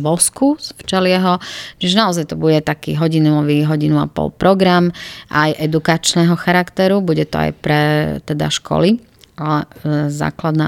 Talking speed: 130 wpm